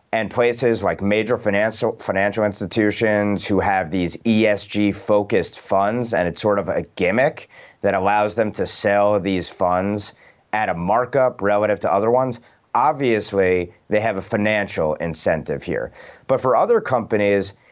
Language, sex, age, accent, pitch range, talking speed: English, male, 30-49, American, 95-115 Hz, 150 wpm